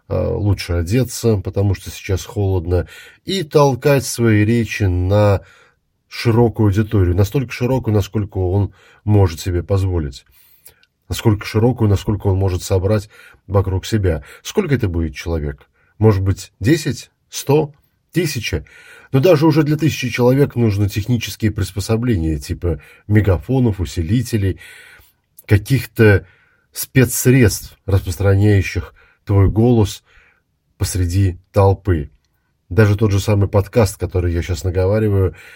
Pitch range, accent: 95-120 Hz, native